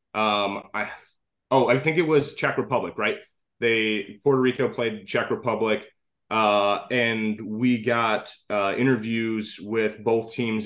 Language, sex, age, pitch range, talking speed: English, male, 20-39, 110-140 Hz, 140 wpm